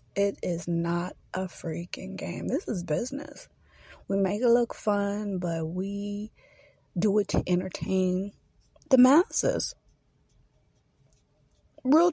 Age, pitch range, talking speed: 30-49, 175-240 Hz, 115 wpm